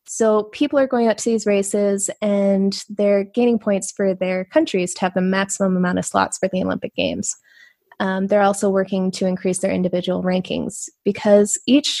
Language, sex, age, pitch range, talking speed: English, female, 20-39, 190-220 Hz, 185 wpm